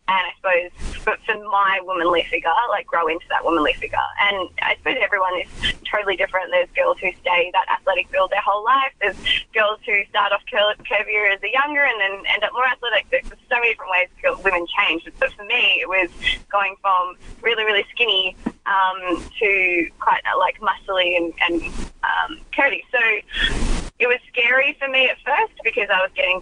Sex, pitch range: female, 185-270 Hz